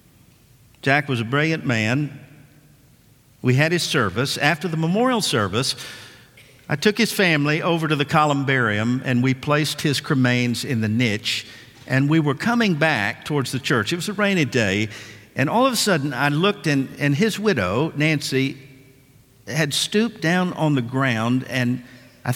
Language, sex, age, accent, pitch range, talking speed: English, male, 50-69, American, 125-160 Hz, 165 wpm